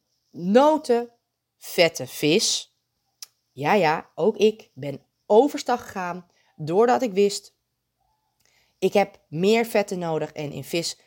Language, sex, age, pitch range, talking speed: Dutch, female, 20-39, 145-200 Hz, 115 wpm